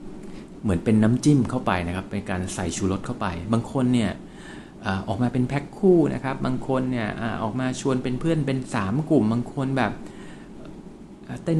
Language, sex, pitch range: Thai, male, 95-120 Hz